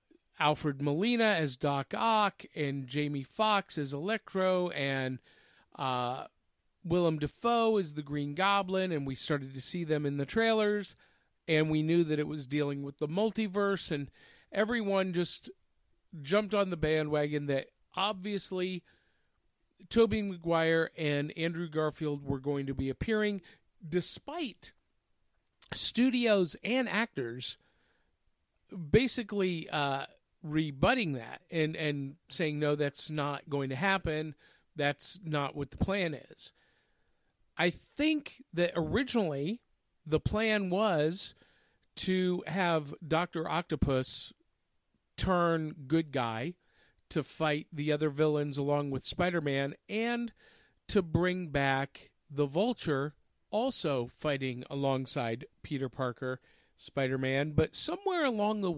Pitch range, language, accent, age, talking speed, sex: 140-195 Hz, English, American, 50-69, 120 wpm, male